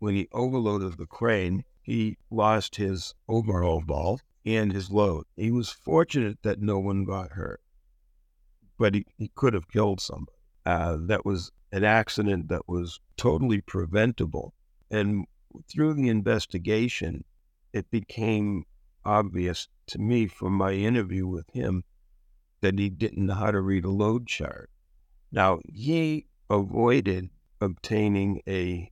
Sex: male